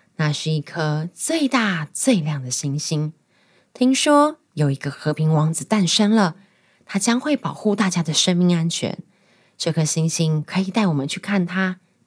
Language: Chinese